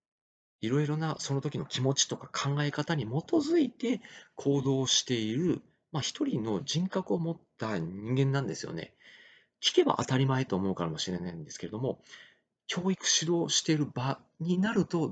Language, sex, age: Japanese, male, 40-59